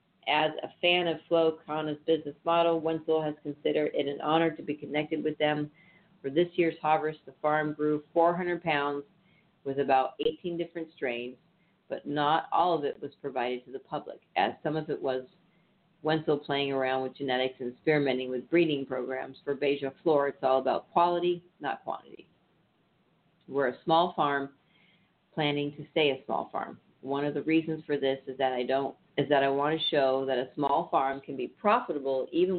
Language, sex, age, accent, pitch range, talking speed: English, female, 50-69, American, 140-170 Hz, 185 wpm